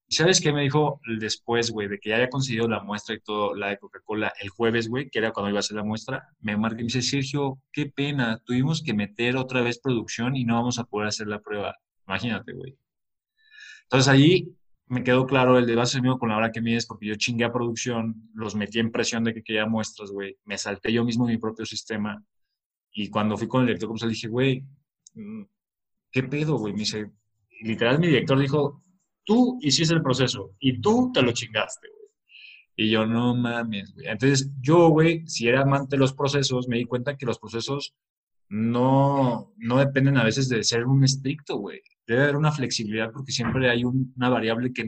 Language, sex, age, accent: English, male, 20-39, Mexican